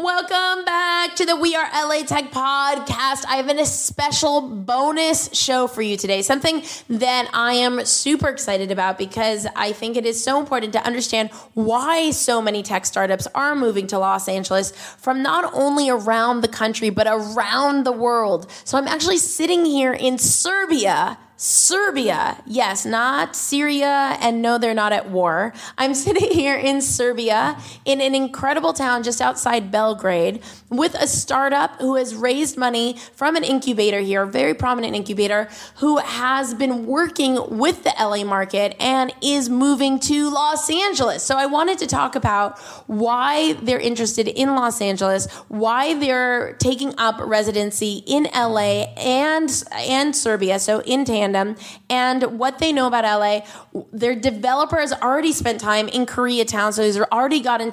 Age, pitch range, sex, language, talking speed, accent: 20-39, 215-280 Hz, female, English, 160 wpm, American